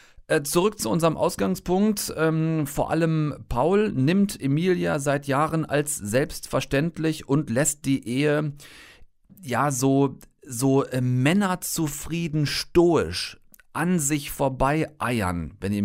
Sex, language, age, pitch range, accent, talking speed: male, German, 40-59, 115-155 Hz, German, 100 wpm